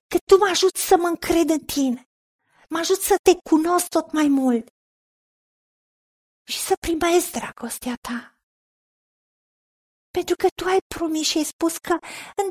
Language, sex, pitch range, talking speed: Romanian, female, 270-355 Hz, 155 wpm